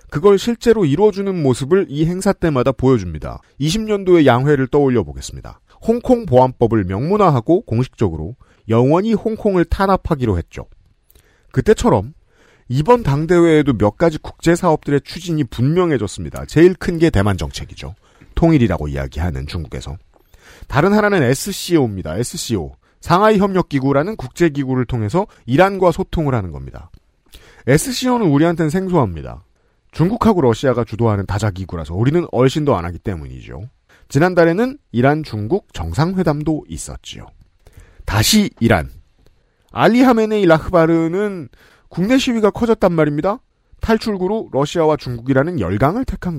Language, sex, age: Korean, male, 40-59